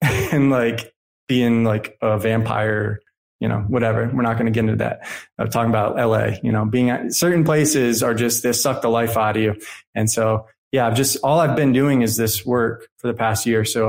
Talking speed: 225 wpm